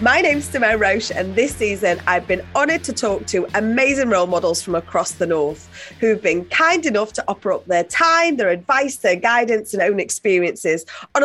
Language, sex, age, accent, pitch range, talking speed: English, female, 30-49, British, 175-245 Hz, 195 wpm